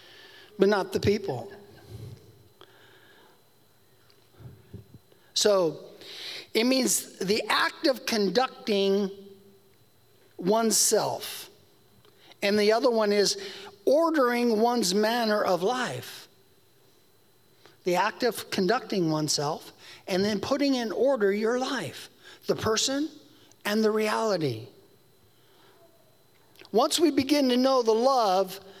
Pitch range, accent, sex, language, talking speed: 180-260 Hz, American, male, English, 95 wpm